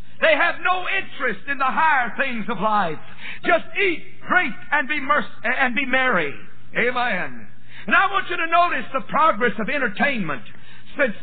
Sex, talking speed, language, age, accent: male, 155 wpm, English, 60-79, American